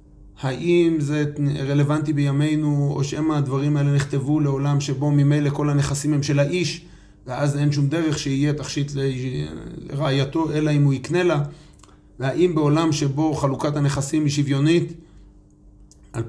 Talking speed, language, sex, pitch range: 140 wpm, Hebrew, male, 135-155 Hz